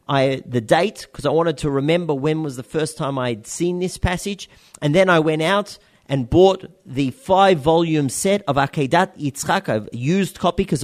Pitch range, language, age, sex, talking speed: 140-195 Hz, English, 40-59, male, 185 wpm